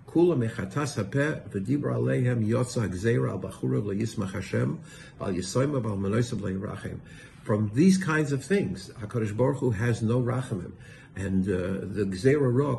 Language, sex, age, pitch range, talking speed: English, male, 60-79, 105-140 Hz, 75 wpm